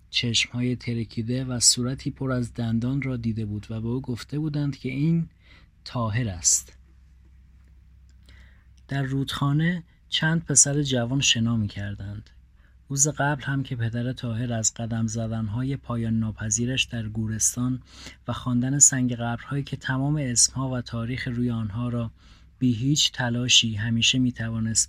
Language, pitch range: Persian, 105-130 Hz